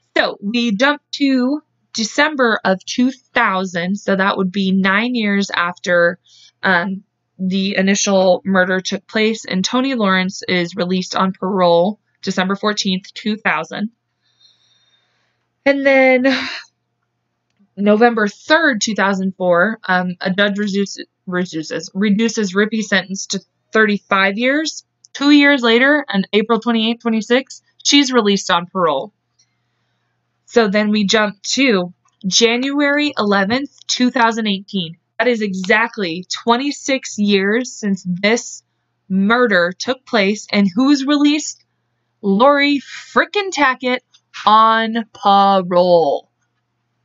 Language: English